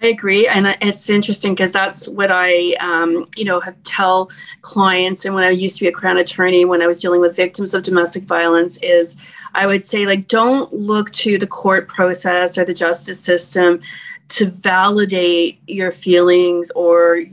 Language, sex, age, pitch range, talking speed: English, female, 30-49, 180-205 Hz, 185 wpm